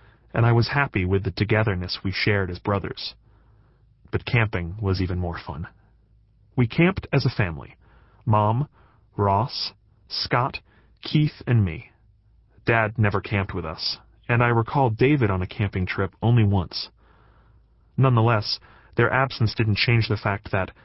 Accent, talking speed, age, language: American, 145 wpm, 30-49, English